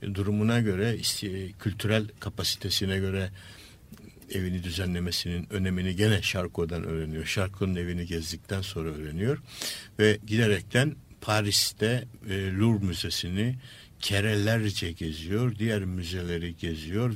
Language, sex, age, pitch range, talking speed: Turkish, male, 60-79, 95-110 Hz, 90 wpm